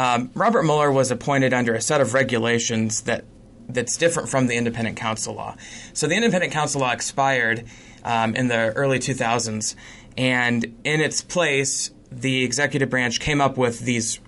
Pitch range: 115-140 Hz